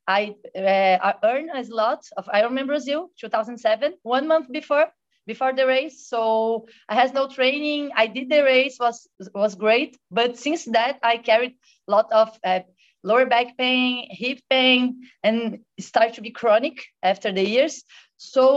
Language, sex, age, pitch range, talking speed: English, female, 30-49, 220-265 Hz, 170 wpm